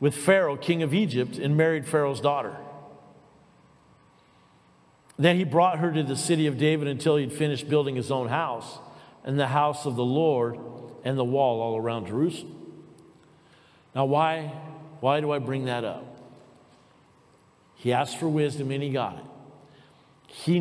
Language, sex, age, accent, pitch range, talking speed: English, male, 50-69, American, 140-215 Hz, 155 wpm